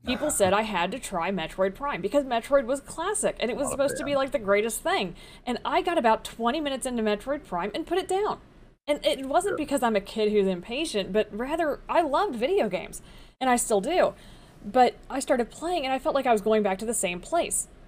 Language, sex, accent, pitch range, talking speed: English, female, American, 195-275 Hz, 235 wpm